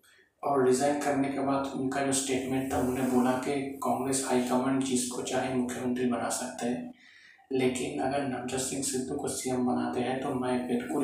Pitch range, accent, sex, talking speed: 125-135 Hz, native, male, 180 wpm